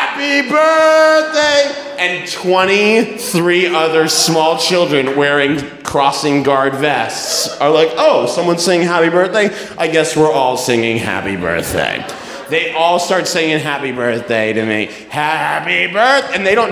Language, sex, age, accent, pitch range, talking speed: English, male, 30-49, American, 115-180 Hz, 140 wpm